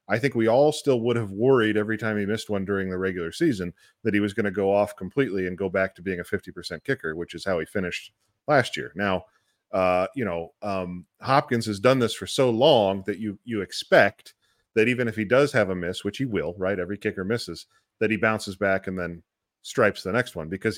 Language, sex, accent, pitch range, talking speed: English, male, American, 95-115 Hz, 235 wpm